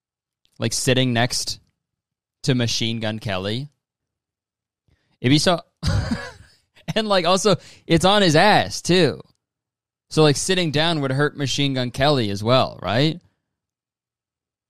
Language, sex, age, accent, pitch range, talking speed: English, male, 20-39, American, 105-135 Hz, 125 wpm